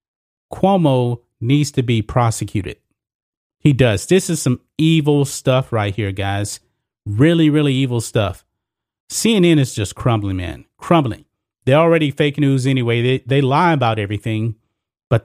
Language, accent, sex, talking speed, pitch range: English, American, male, 140 wpm, 115-145 Hz